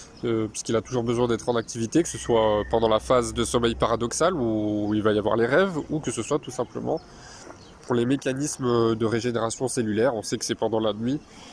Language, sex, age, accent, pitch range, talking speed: French, male, 20-39, French, 115-140 Hz, 225 wpm